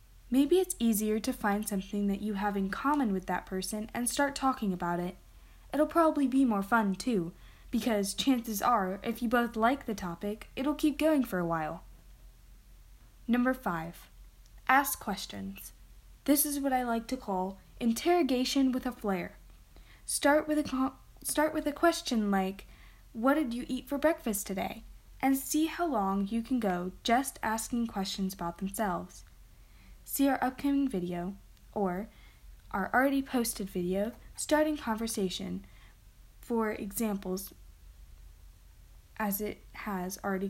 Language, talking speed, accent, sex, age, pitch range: English, 145 wpm, American, female, 10-29, 185-260 Hz